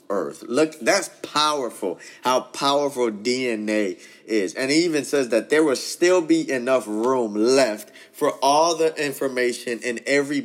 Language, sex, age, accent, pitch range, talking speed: English, male, 20-39, American, 110-155 Hz, 150 wpm